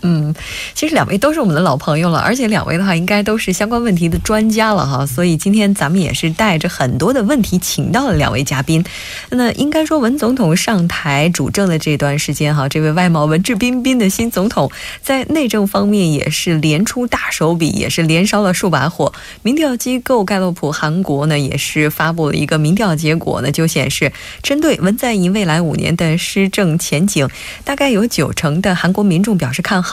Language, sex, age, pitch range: Korean, female, 20-39, 155-220 Hz